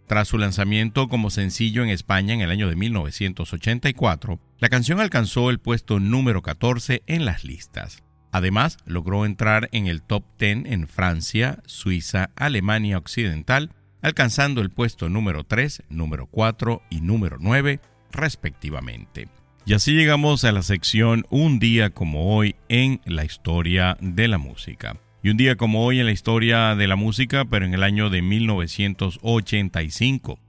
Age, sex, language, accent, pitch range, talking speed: 50-69, male, Spanish, Mexican, 95-120 Hz, 155 wpm